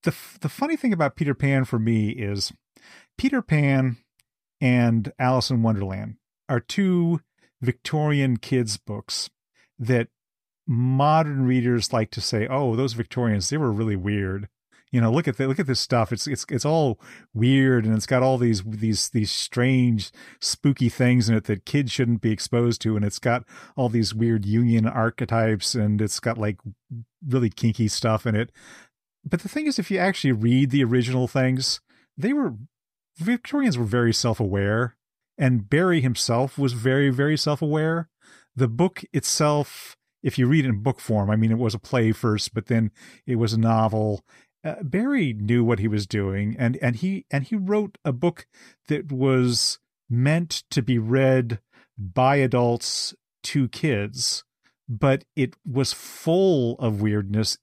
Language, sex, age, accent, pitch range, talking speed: English, male, 40-59, American, 115-140 Hz, 170 wpm